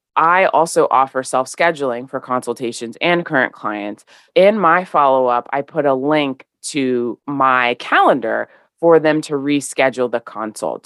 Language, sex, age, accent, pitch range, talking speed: English, female, 20-39, American, 130-175 Hz, 140 wpm